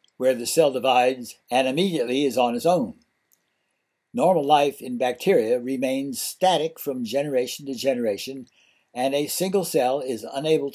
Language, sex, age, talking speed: English, male, 60-79, 145 wpm